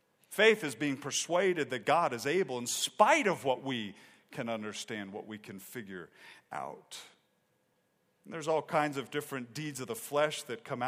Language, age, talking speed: English, 40-59, 170 wpm